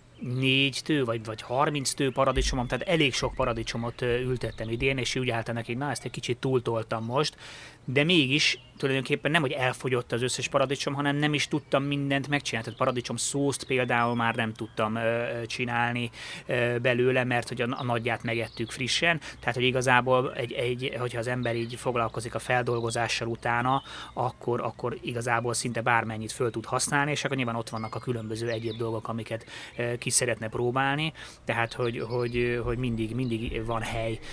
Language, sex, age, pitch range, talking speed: Hungarian, male, 30-49, 115-130 Hz, 170 wpm